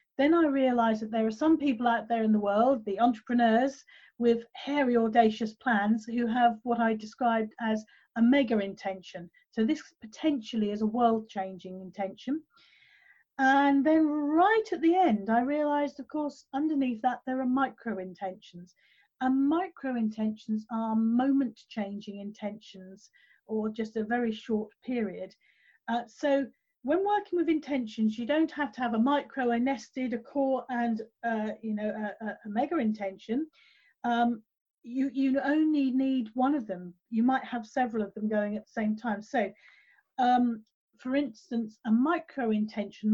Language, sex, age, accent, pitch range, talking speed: English, female, 40-59, British, 215-270 Hz, 160 wpm